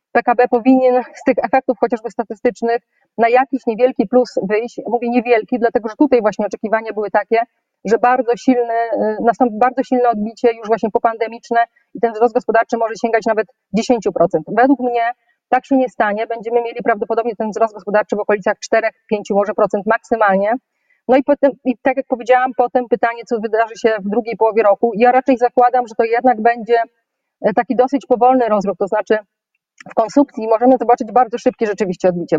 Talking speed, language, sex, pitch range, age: 175 wpm, Polish, female, 220-255 Hz, 30-49